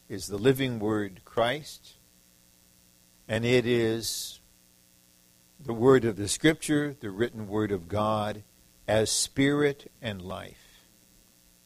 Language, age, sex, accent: English, 60-79, male, American